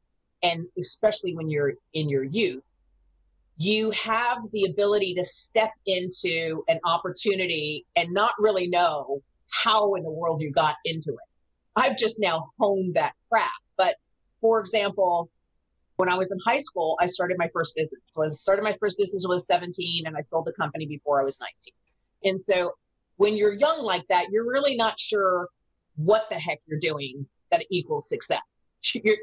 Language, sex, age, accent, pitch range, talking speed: English, female, 40-59, American, 160-215 Hz, 180 wpm